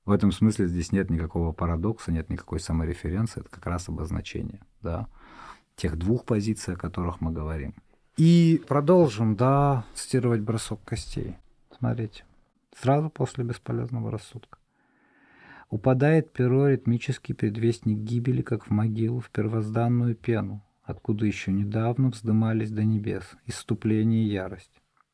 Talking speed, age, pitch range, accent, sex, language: 125 wpm, 40-59, 100-125 Hz, native, male, Russian